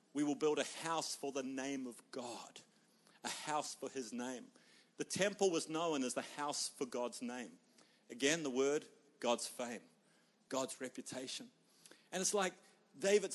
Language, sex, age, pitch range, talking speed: English, male, 50-69, 150-200 Hz, 160 wpm